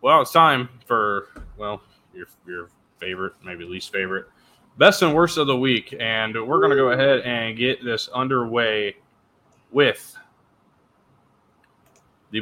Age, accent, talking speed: 20-39, American, 140 wpm